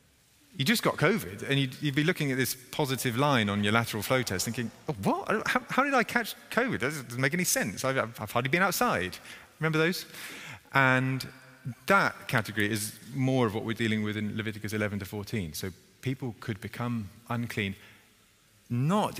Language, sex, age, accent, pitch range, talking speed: English, male, 30-49, British, 100-130 Hz, 190 wpm